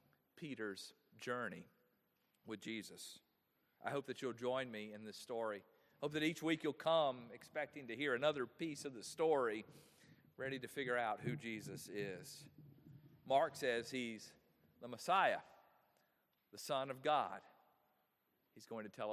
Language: English